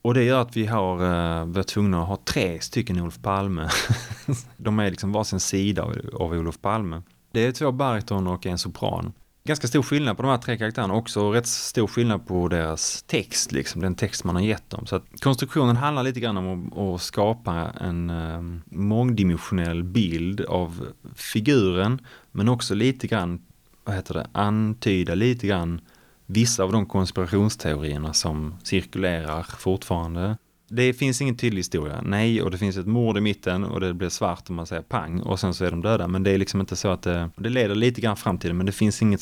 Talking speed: 195 wpm